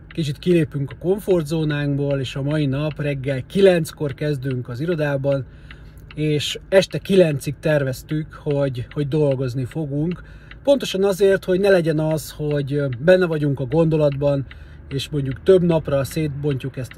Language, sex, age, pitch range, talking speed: Hungarian, male, 30-49, 140-175 Hz, 140 wpm